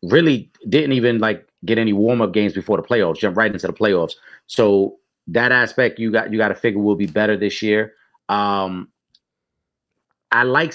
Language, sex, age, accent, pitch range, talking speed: English, male, 30-49, American, 105-125 Hz, 185 wpm